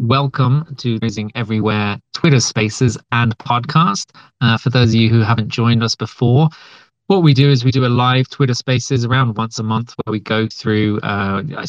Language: English